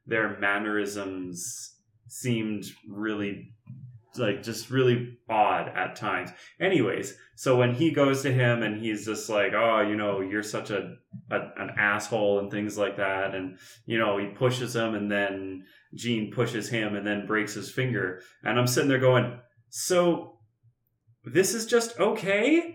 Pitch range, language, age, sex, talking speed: 105-135 Hz, English, 30-49, male, 160 wpm